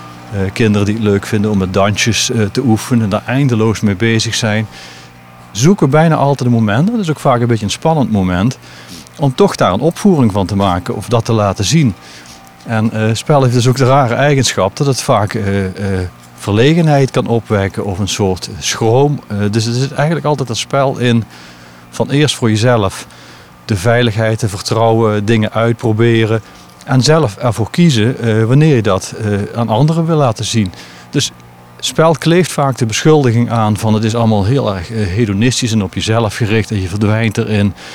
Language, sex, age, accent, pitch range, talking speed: Dutch, male, 40-59, Dutch, 100-125 Hz, 180 wpm